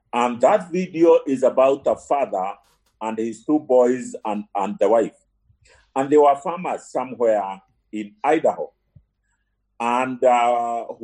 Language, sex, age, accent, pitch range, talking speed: English, male, 40-59, Nigerian, 120-170 Hz, 130 wpm